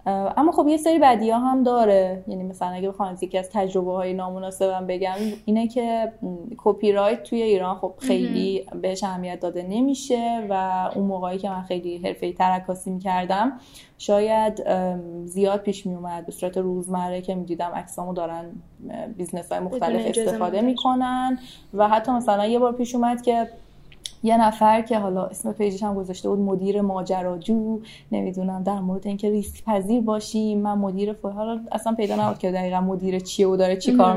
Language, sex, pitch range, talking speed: Persian, female, 185-240 Hz, 165 wpm